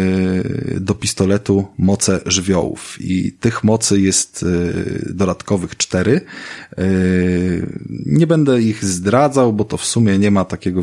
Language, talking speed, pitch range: Polish, 115 wpm, 90-115 Hz